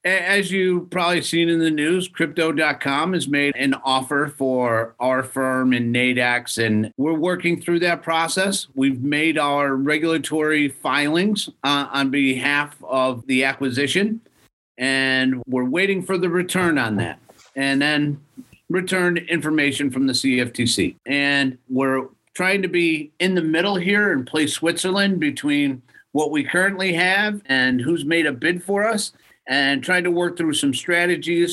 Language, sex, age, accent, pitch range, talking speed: English, male, 40-59, American, 135-175 Hz, 150 wpm